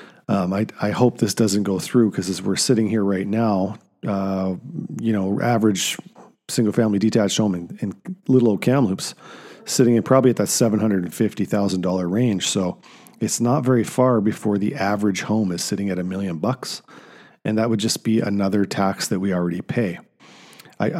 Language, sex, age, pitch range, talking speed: English, male, 40-59, 100-115 Hz, 175 wpm